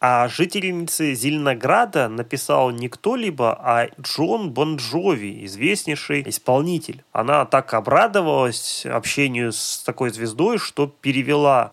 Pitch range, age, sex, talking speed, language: 125-160 Hz, 20-39, male, 100 wpm, Russian